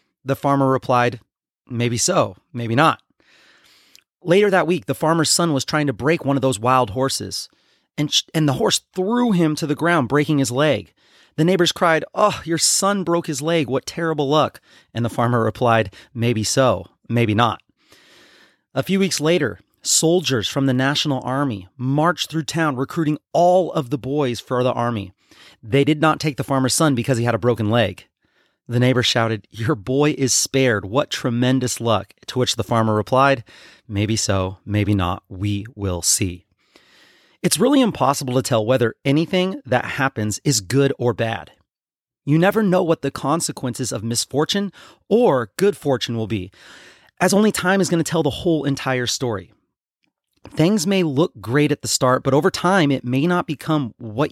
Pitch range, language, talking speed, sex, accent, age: 120-160 Hz, English, 180 wpm, male, American, 30-49